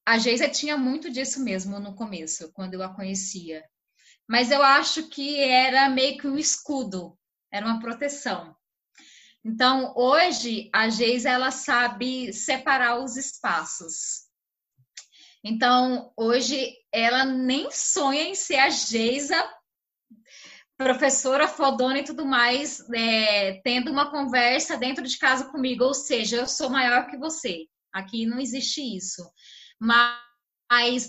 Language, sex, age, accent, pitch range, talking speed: Portuguese, female, 10-29, Brazilian, 225-285 Hz, 130 wpm